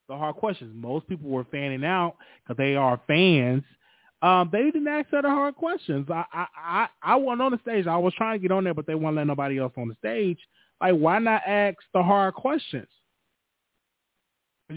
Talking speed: 210 wpm